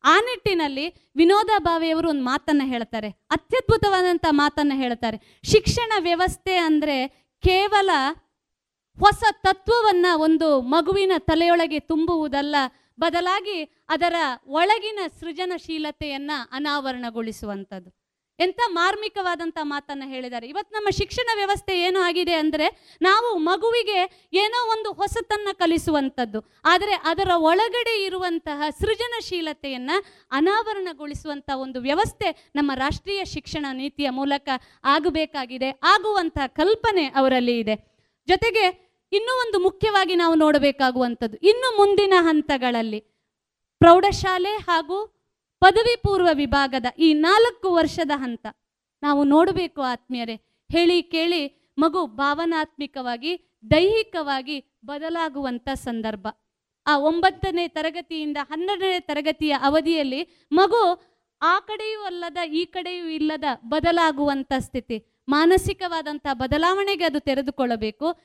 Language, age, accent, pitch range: Kannada, 20-39, native, 280-375 Hz